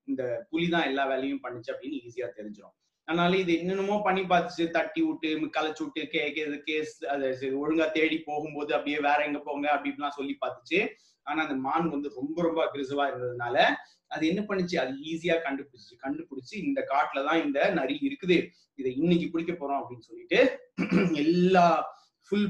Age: 30-49